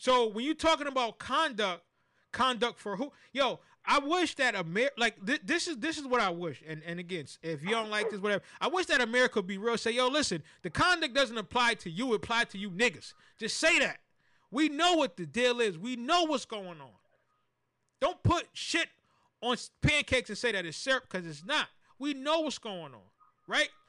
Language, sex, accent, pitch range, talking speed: English, male, American, 220-295 Hz, 215 wpm